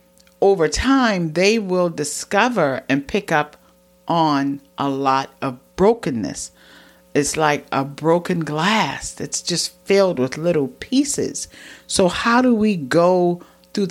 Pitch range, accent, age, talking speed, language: 130-170 Hz, American, 50-69, 130 wpm, English